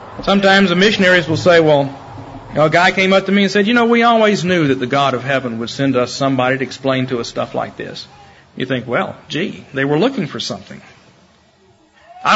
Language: English